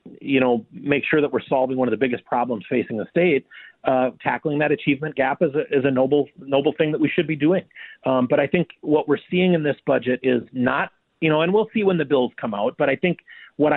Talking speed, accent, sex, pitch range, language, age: 250 wpm, American, male, 130-160 Hz, English, 30-49